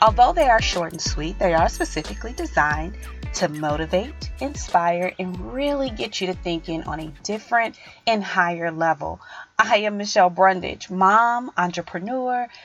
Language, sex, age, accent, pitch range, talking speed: English, female, 30-49, American, 165-220 Hz, 145 wpm